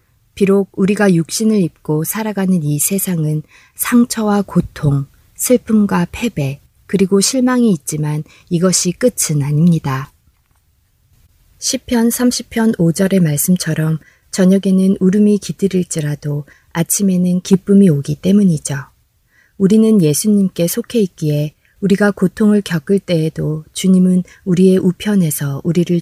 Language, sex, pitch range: Korean, female, 155-205 Hz